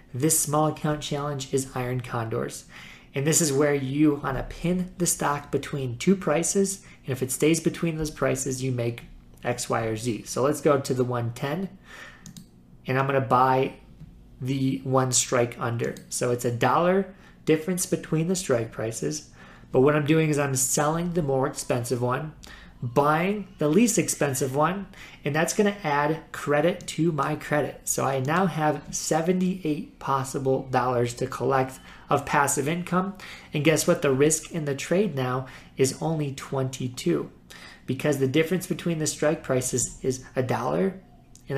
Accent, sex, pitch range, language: American, male, 130-160 Hz, English